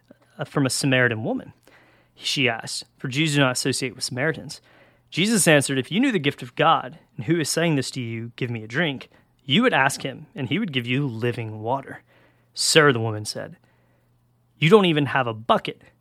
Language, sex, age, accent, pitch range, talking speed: English, male, 30-49, American, 125-155 Hz, 200 wpm